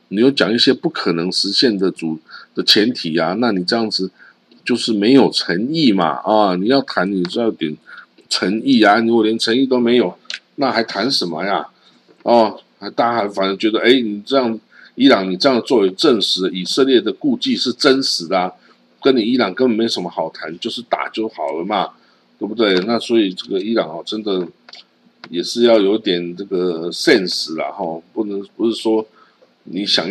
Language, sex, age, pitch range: Chinese, male, 50-69, 95-120 Hz